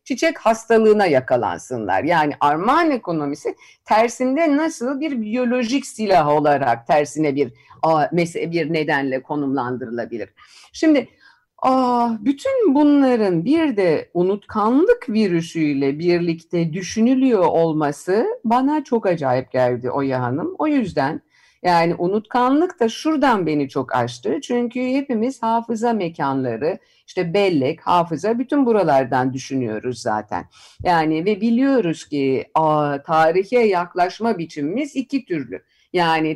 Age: 50-69